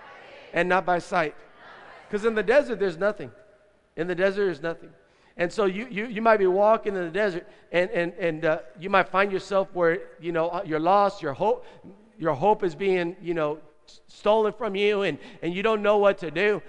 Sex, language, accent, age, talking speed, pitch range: male, English, American, 50-69, 210 wpm, 170-210 Hz